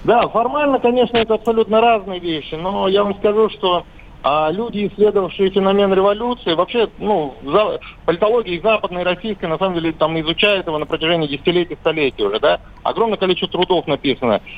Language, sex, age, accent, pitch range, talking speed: Russian, male, 50-69, native, 160-210 Hz, 165 wpm